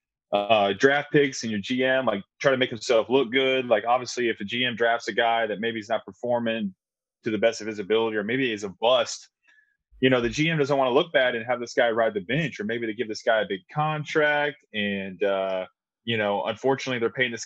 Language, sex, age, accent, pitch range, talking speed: English, male, 20-39, American, 110-145 Hz, 240 wpm